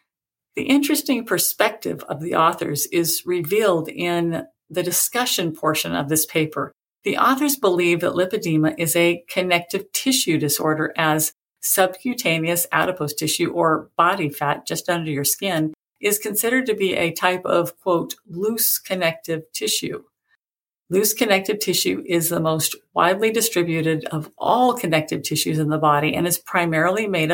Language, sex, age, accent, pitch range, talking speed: English, female, 50-69, American, 160-200 Hz, 145 wpm